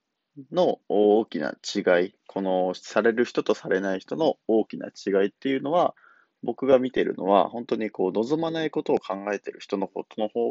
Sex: male